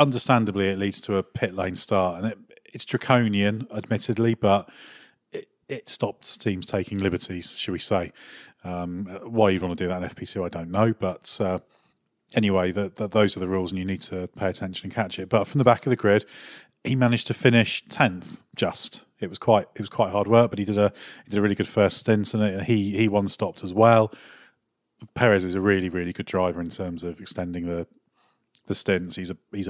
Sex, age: male, 30-49